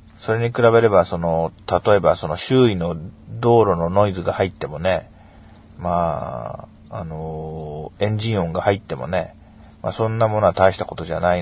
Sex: male